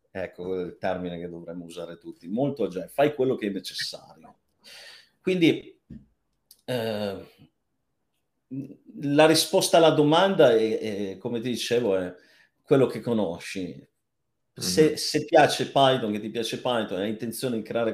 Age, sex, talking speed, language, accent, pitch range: 40-59, male, 135 wpm, Italian, native, 90-125 Hz